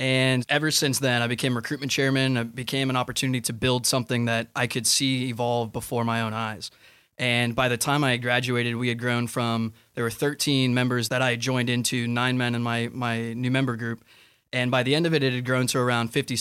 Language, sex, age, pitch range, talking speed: English, male, 20-39, 120-135 Hz, 235 wpm